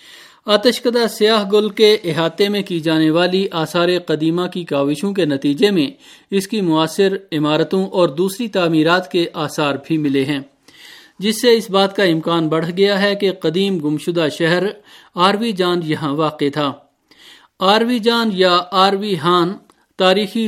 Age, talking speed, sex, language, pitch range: 50-69, 150 wpm, male, Urdu, 165-205 Hz